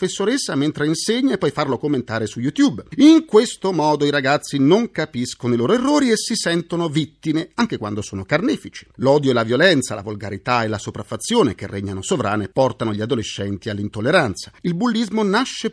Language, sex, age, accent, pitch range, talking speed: Italian, male, 40-59, native, 115-190 Hz, 170 wpm